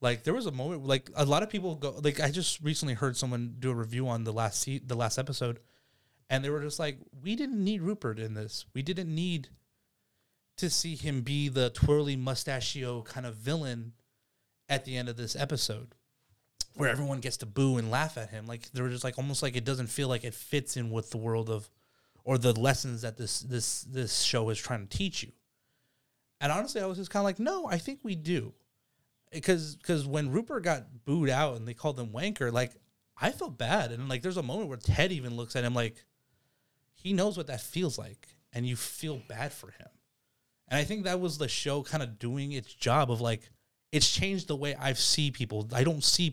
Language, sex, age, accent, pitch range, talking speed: English, male, 30-49, American, 120-145 Hz, 225 wpm